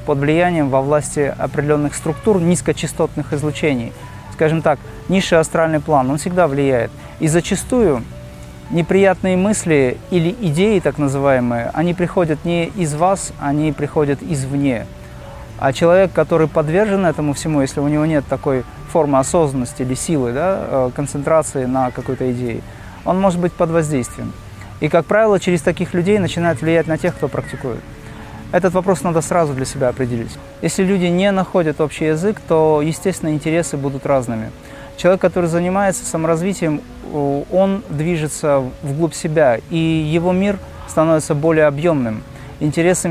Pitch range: 140-175 Hz